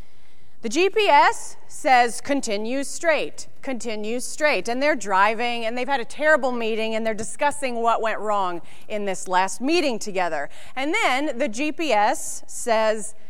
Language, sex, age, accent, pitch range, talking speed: English, female, 30-49, American, 225-295 Hz, 145 wpm